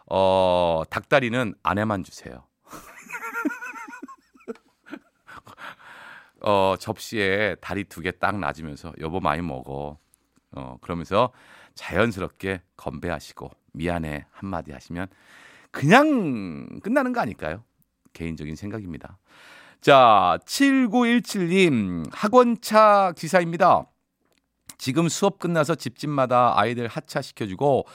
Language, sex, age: Korean, male, 40-59